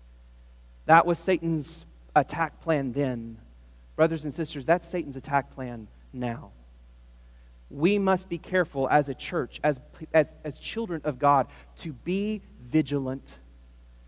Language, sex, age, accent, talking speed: English, male, 30-49, American, 125 wpm